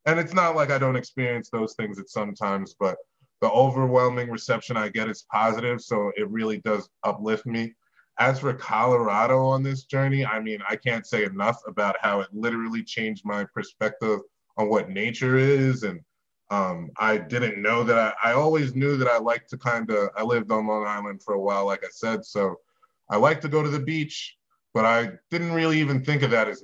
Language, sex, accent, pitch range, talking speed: English, male, American, 110-130 Hz, 210 wpm